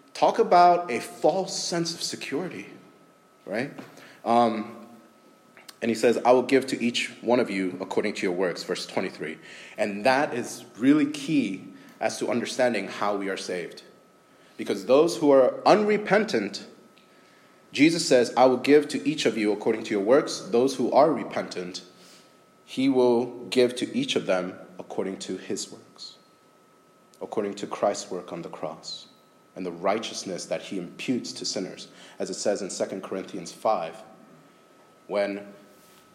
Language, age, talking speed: English, 30-49, 155 wpm